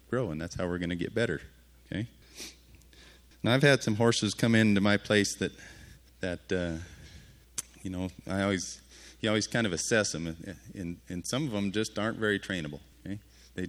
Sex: male